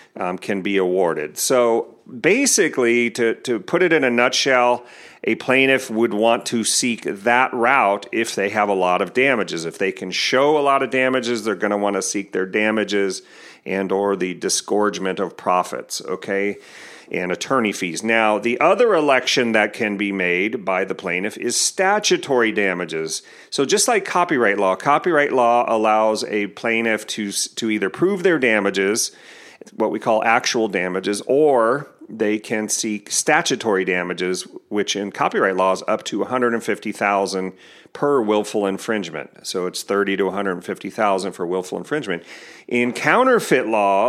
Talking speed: 165 wpm